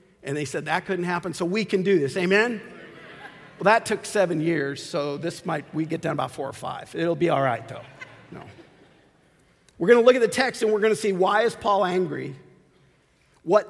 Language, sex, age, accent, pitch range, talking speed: English, male, 50-69, American, 175-230 Hz, 220 wpm